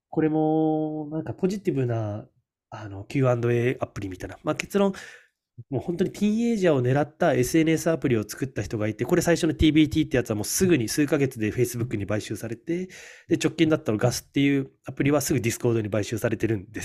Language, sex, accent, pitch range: Japanese, male, native, 110-150 Hz